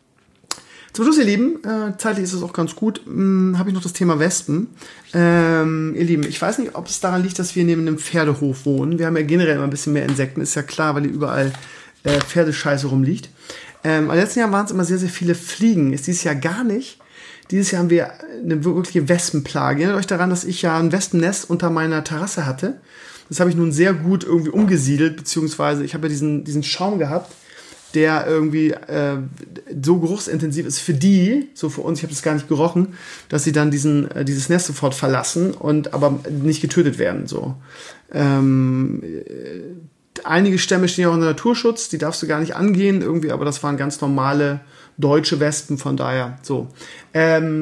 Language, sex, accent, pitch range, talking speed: German, male, German, 150-180 Hz, 205 wpm